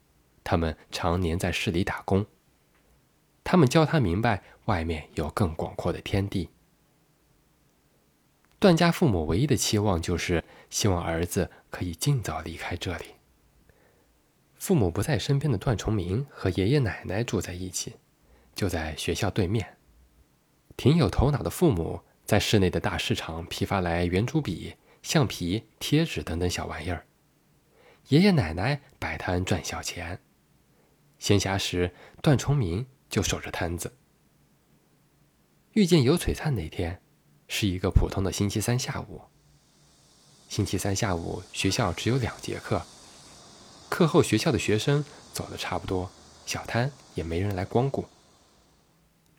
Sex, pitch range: male, 85-135 Hz